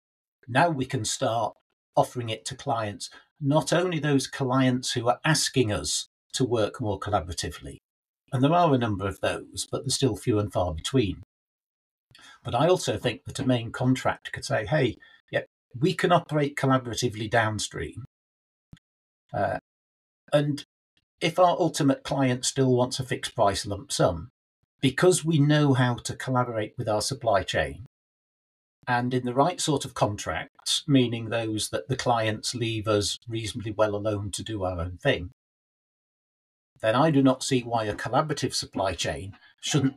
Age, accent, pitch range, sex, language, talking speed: 50-69, British, 110-135 Hz, male, English, 160 wpm